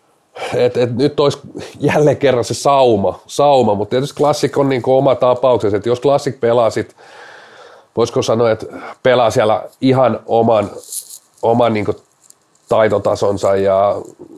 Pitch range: 105-130 Hz